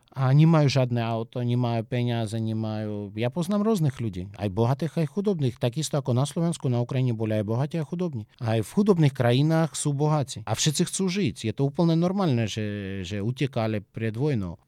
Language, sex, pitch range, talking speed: Slovak, male, 115-145 Hz, 185 wpm